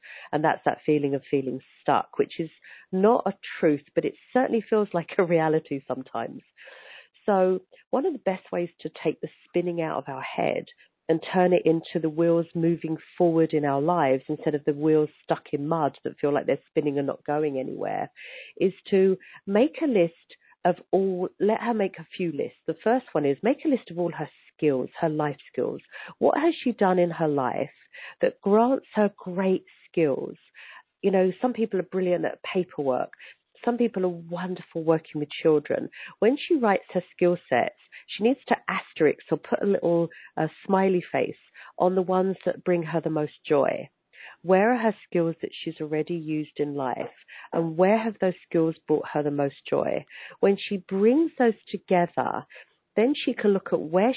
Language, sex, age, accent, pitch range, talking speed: English, female, 40-59, British, 155-200 Hz, 190 wpm